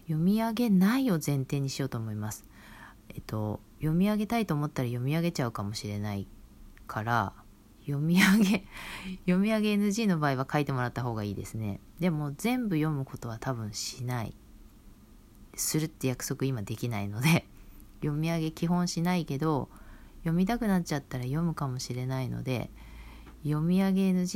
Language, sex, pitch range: Japanese, female, 110-165 Hz